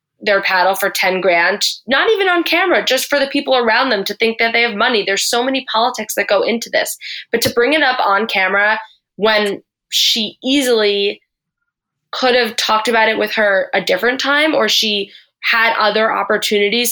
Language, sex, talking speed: English, female, 190 wpm